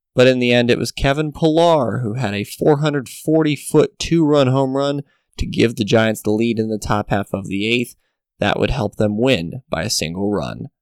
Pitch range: 110-135 Hz